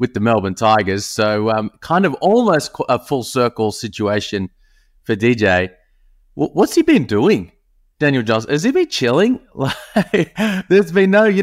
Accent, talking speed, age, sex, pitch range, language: Australian, 165 wpm, 30-49, male, 105-130 Hz, English